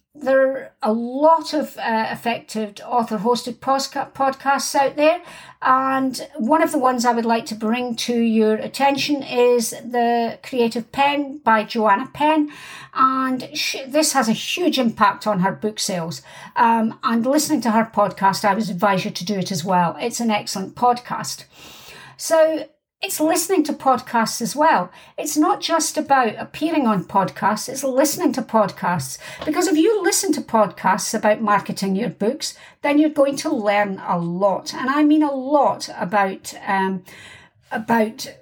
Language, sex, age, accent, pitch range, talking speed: English, female, 60-79, British, 215-285 Hz, 160 wpm